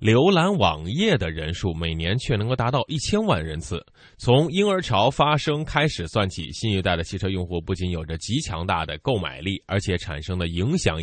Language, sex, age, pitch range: Chinese, male, 20-39, 85-135 Hz